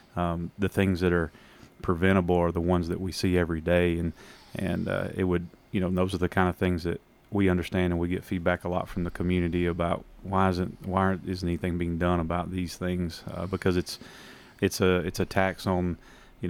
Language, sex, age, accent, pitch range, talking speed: English, male, 30-49, American, 90-95 Hz, 220 wpm